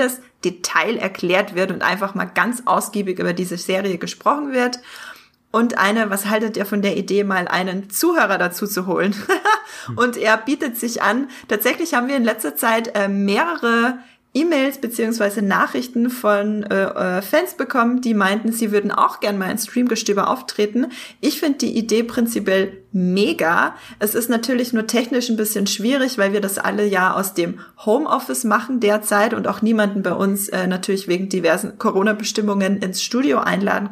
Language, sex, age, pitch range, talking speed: German, female, 20-39, 200-240 Hz, 165 wpm